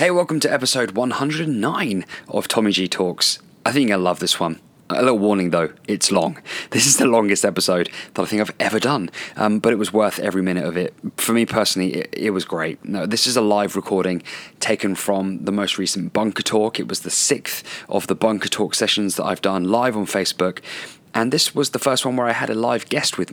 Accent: British